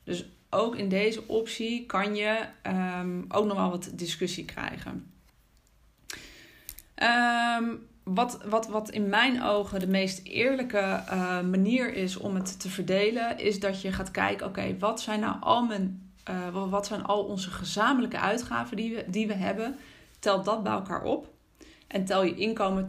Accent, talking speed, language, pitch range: Dutch, 165 wpm, Dutch, 185-220 Hz